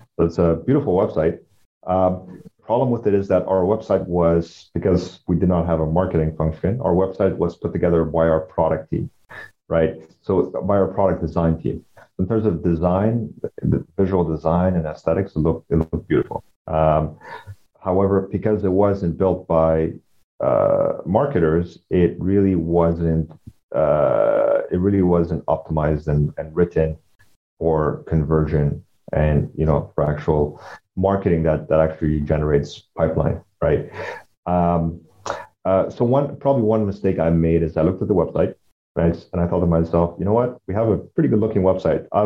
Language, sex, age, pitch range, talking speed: English, male, 40-59, 80-95 Hz, 170 wpm